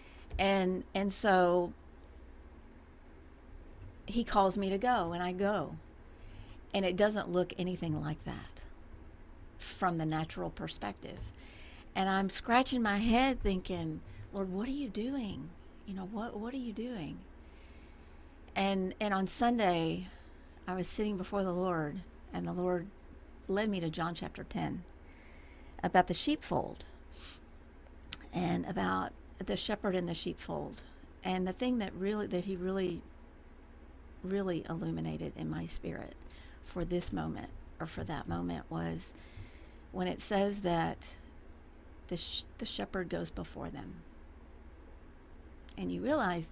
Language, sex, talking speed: English, female, 135 wpm